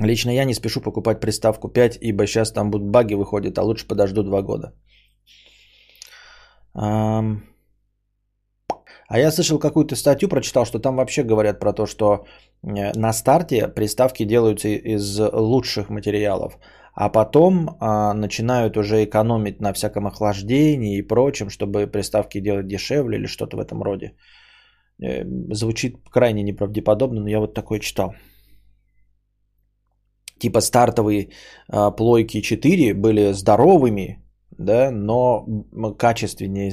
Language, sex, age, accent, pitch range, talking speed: Russian, male, 20-39, native, 105-125 Hz, 125 wpm